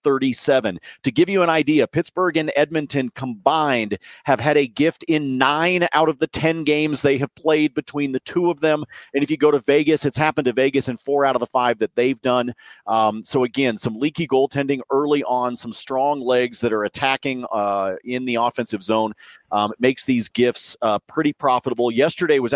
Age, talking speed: 40-59, 200 wpm